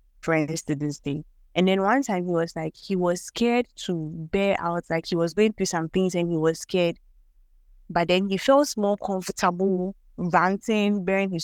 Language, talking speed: English, 195 wpm